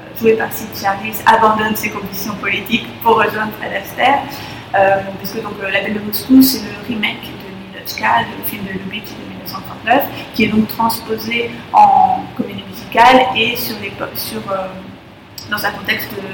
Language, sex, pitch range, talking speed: French, female, 200-235 Hz, 165 wpm